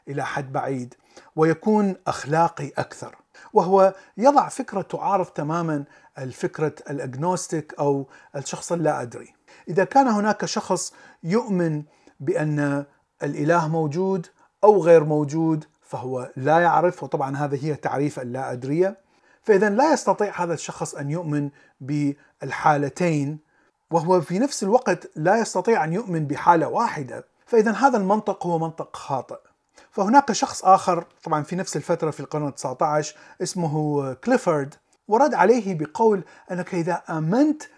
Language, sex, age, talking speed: Arabic, male, 40-59, 125 wpm